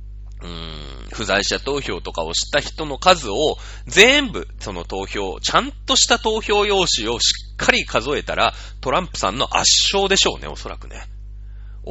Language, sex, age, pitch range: Japanese, male, 30-49, 100-165 Hz